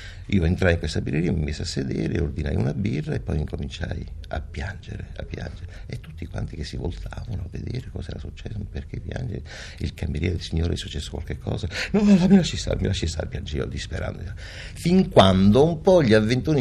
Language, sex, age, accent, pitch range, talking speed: Italian, male, 60-79, native, 85-110 Hz, 210 wpm